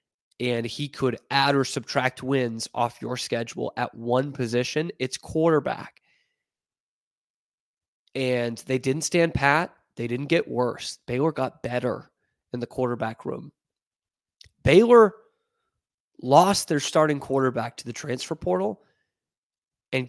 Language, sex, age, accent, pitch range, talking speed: English, male, 20-39, American, 120-150 Hz, 120 wpm